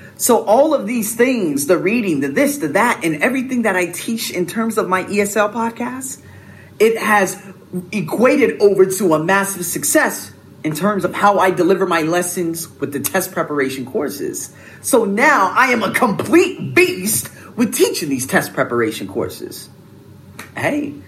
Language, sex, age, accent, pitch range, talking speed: English, male, 30-49, American, 150-220 Hz, 160 wpm